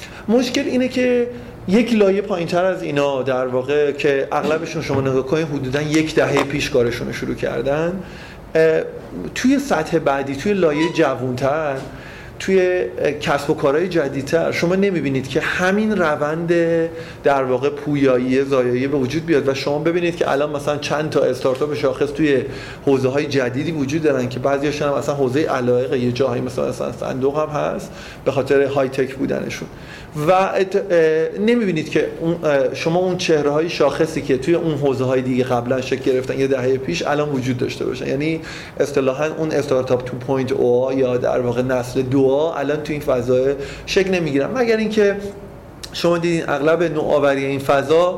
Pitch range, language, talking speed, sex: 135-165 Hz, Persian, 160 wpm, male